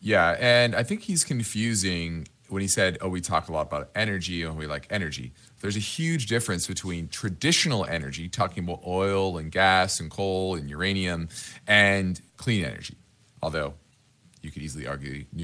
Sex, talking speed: male, 170 wpm